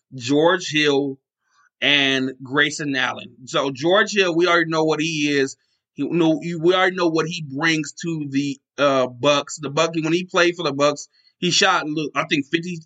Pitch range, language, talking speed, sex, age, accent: 140-160 Hz, English, 175 wpm, male, 20-39, American